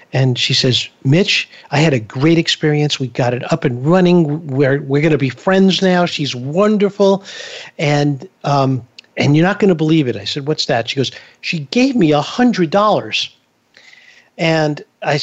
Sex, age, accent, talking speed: male, 50-69, American, 175 wpm